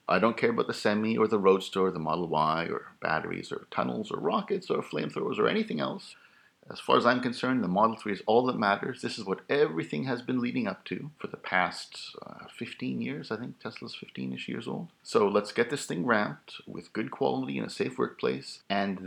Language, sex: English, male